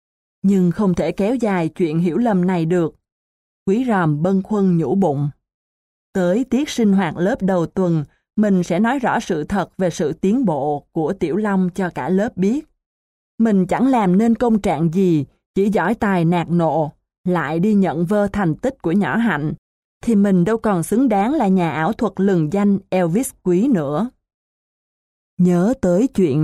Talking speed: 180 wpm